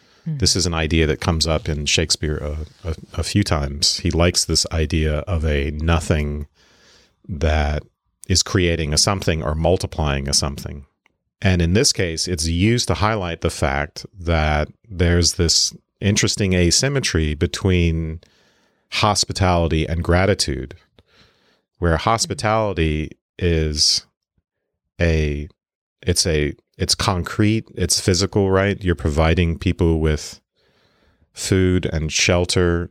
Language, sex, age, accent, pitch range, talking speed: English, male, 40-59, American, 80-95 Hz, 120 wpm